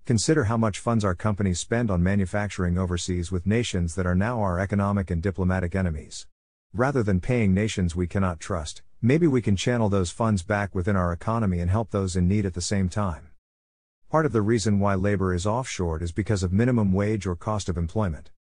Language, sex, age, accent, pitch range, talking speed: English, male, 50-69, American, 90-110 Hz, 205 wpm